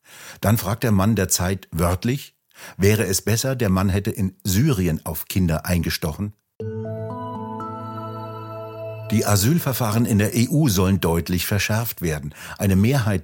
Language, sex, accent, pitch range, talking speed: German, male, German, 90-110 Hz, 130 wpm